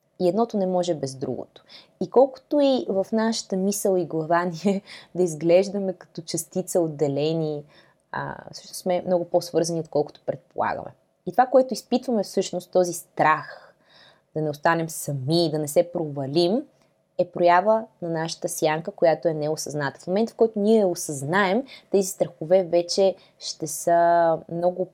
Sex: female